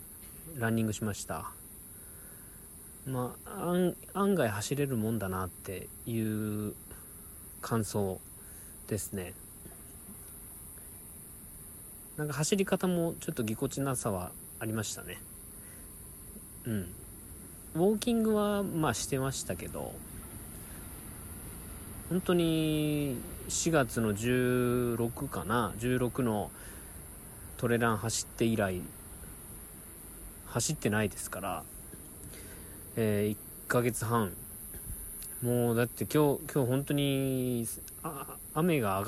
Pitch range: 100-125 Hz